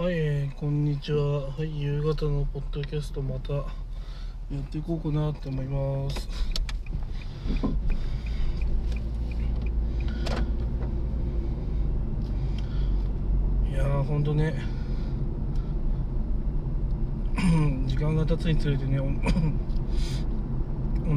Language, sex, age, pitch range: Japanese, male, 20-39, 115-150 Hz